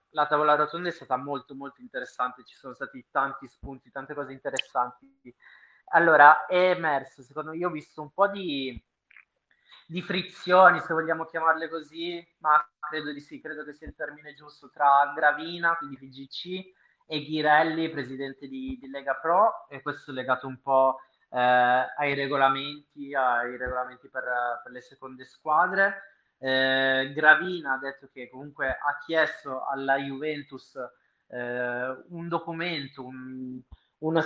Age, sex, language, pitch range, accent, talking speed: 20-39, male, Italian, 130-160 Hz, native, 145 wpm